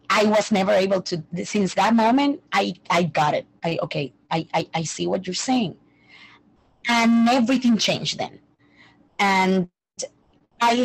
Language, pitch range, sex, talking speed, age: English, 170-215 Hz, female, 150 wpm, 30-49